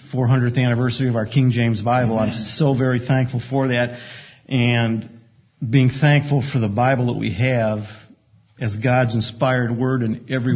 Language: English